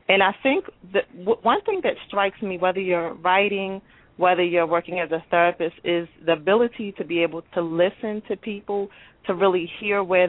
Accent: American